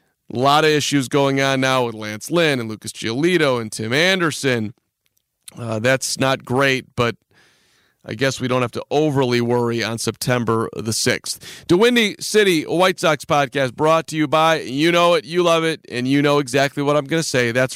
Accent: American